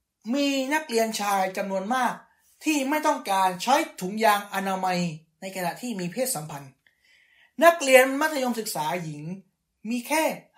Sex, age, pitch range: male, 20-39, 175-245 Hz